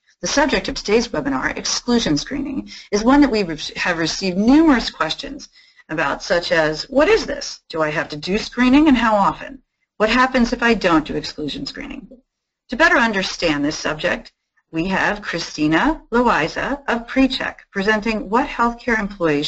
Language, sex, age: English, female, 40-59